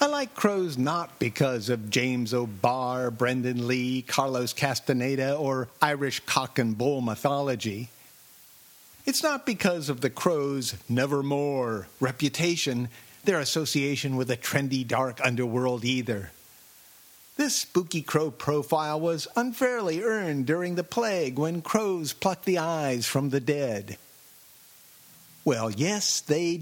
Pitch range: 125-200 Hz